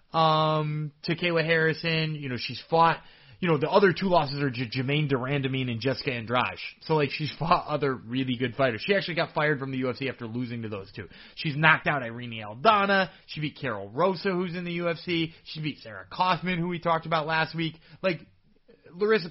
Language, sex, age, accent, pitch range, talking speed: English, male, 30-49, American, 135-190 Hz, 210 wpm